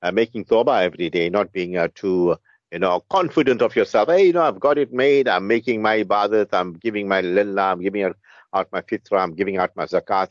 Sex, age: male, 50-69